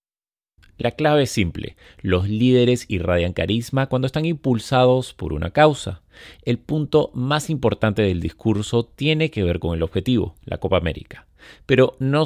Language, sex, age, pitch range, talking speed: Spanish, male, 30-49, 95-140 Hz, 150 wpm